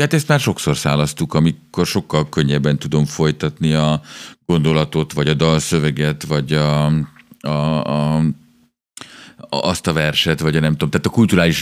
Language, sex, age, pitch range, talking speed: Hungarian, male, 50-69, 75-90 Hz, 150 wpm